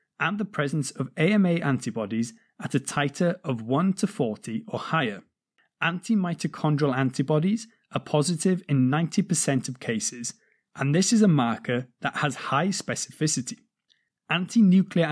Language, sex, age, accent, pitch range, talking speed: English, male, 30-49, British, 130-180 Hz, 130 wpm